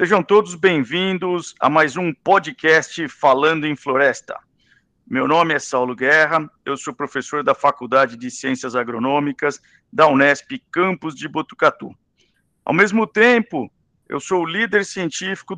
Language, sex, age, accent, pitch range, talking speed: Portuguese, male, 50-69, Brazilian, 145-190 Hz, 140 wpm